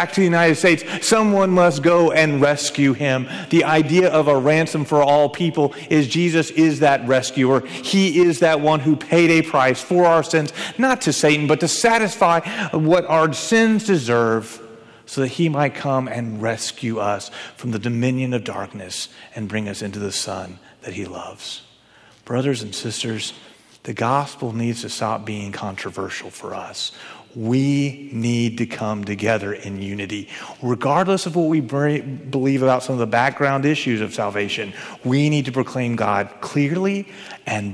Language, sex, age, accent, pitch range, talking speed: English, male, 40-59, American, 125-180 Hz, 165 wpm